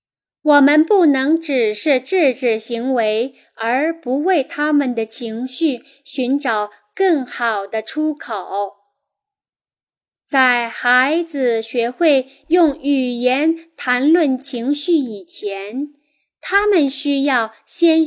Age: 10-29